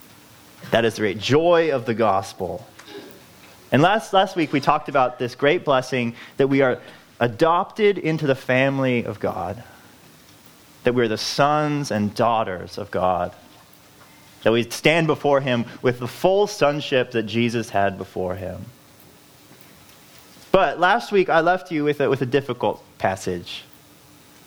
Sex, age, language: male, 30-49, English